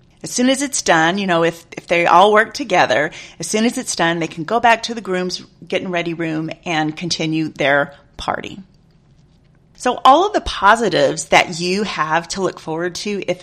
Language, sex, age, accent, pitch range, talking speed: English, female, 30-49, American, 165-200 Hz, 200 wpm